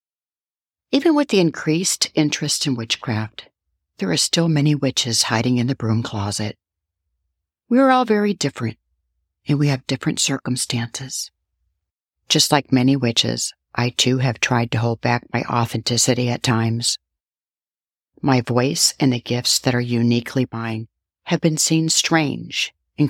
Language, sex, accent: English, female, American